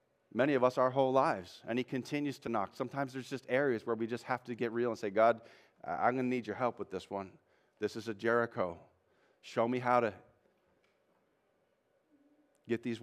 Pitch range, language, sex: 105-125 Hz, English, male